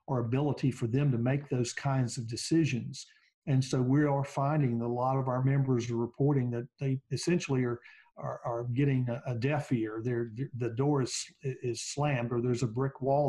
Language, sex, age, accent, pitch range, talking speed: English, male, 50-69, American, 120-140 Hz, 195 wpm